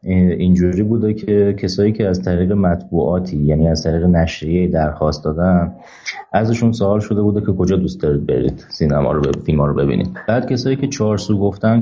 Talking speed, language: 175 wpm, Persian